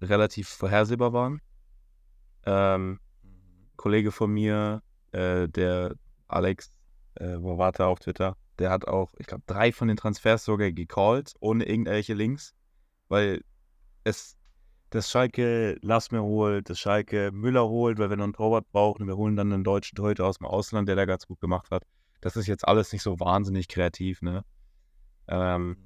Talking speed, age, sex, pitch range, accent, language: 170 wpm, 20-39, male, 90-110 Hz, German, German